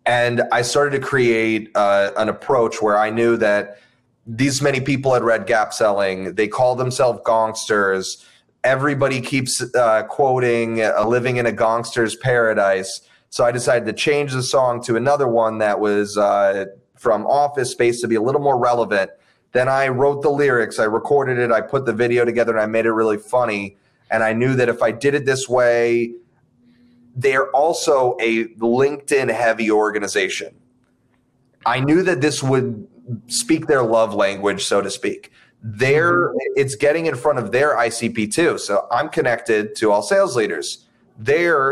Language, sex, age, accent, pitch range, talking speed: English, male, 30-49, American, 110-130 Hz, 170 wpm